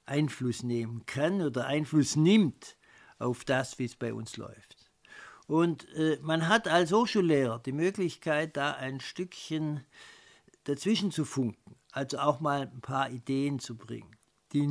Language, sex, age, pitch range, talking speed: German, male, 60-79, 130-165 Hz, 145 wpm